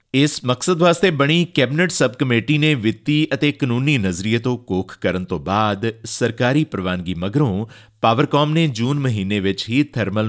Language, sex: Punjabi, male